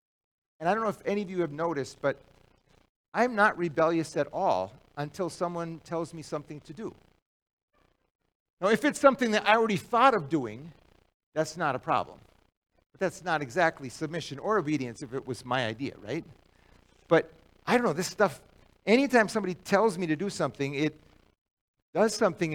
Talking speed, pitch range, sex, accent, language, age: 175 wpm, 135-200 Hz, male, American, English, 50-69